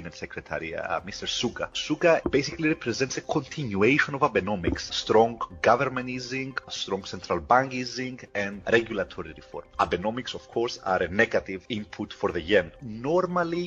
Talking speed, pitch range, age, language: 140 wpm, 110-140 Hz, 30-49, English